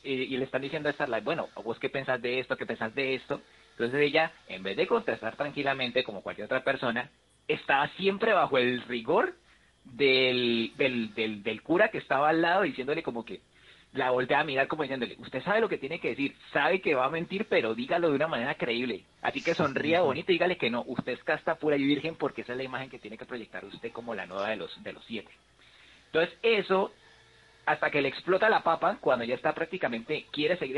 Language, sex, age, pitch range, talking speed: Spanish, male, 30-49, 130-165 Hz, 225 wpm